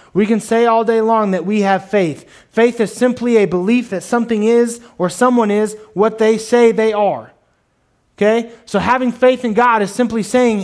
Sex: male